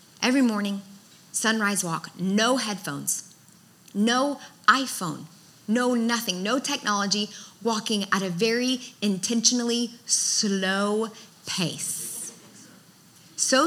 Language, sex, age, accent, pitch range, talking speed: English, female, 20-39, American, 195-240 Hz, 90 wpm